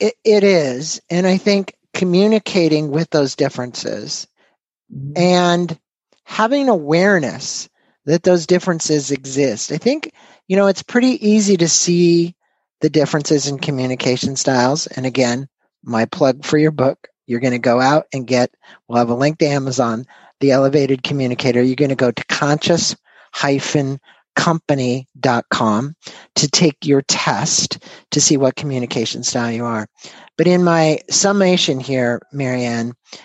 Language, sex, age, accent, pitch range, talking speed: English, male, 50-69, American, 130-170 Hz, 140 wpm